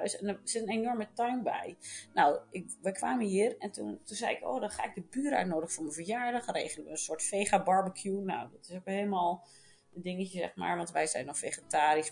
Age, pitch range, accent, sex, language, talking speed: 30-49, 175-250 Hz, Dutch, female, Dutch, 225 wpm